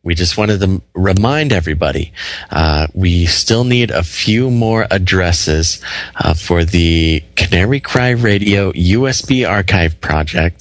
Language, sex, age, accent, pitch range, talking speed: English, male, 30-49, American, 85-110 Hz, 130 wpm